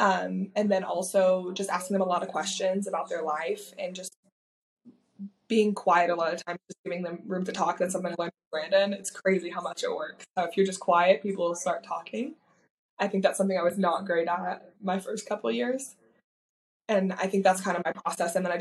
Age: 20-39